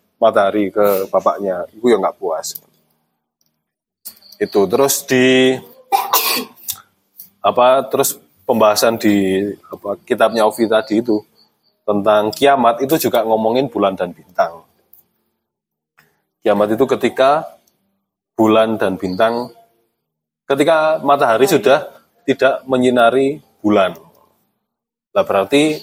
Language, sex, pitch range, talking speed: Indonesian, male, 100-130 Hz, 95 wpm